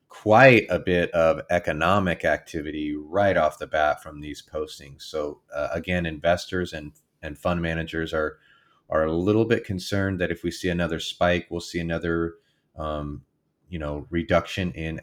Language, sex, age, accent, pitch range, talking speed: English, male, 30-49, American, 85-95 Hz, 165 wpm